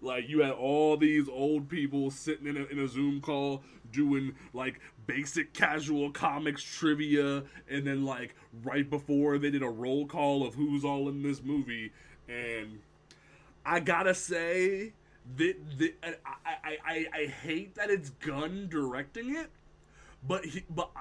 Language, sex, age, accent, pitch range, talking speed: English, male, 20-39, American, 125-155 Hz, 145 wpm